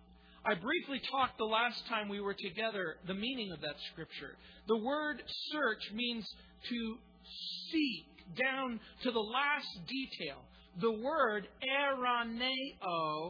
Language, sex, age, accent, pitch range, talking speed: English, male, 50-69, American, 180-250 Hz, 125 wpm